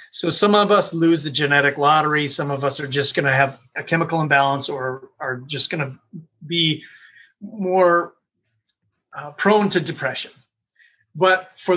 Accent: American